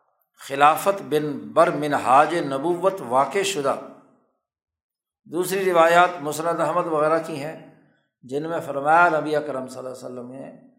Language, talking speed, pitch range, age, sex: Urdu, 135 wpm, 145-185 Hz, 60-79, male